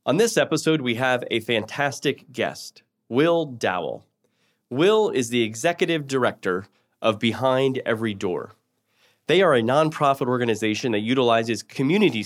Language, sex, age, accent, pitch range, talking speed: English, male, 30-49, American, 115-150 Hz, 130 wpm